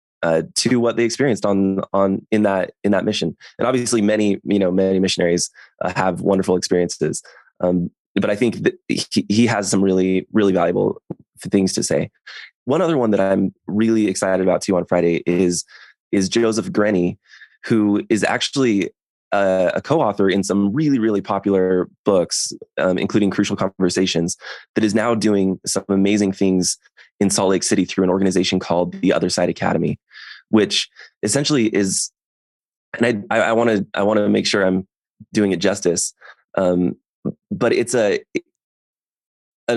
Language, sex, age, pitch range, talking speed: English, male, 20-39, 95-110 Hz, 165 wpm